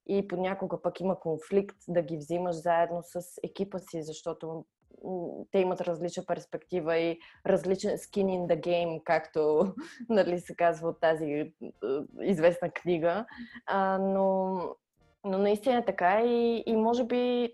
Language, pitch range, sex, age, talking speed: Bulgarian, 165-200 Hz, female, 20-39, 135 wpm